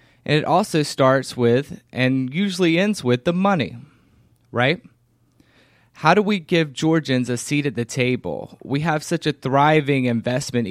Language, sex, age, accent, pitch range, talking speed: English, male, 20-39, American, 120-155 Hz, 155 wpm